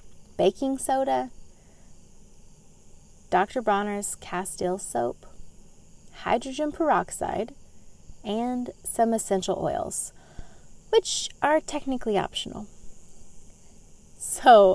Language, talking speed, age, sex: English, 70 wpm, 30-49, female